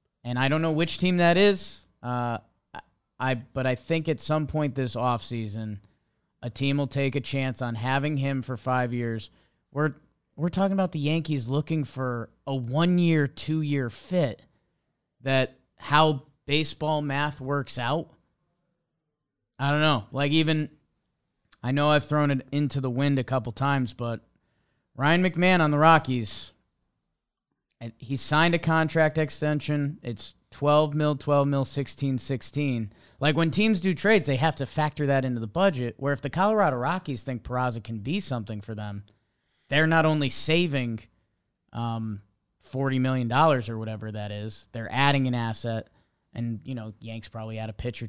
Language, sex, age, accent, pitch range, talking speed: English, male, 30-49, American, 120-155 Hz, 160 wpm